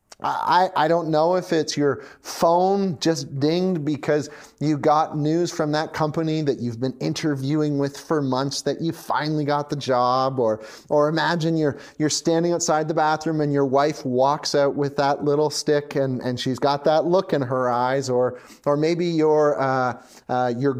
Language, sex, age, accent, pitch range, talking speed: English, male, 30-49, American, 135-165 Hz, 185 wpm